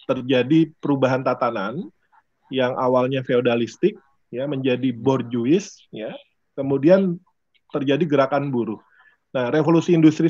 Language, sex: Indonesian, male